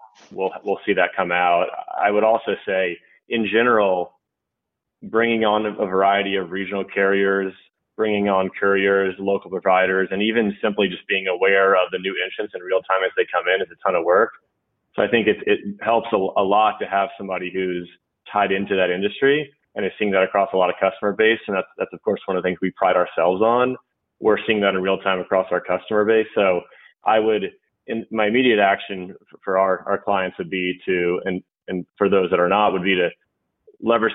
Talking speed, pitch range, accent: 210 wpm, 90-100 Hz, American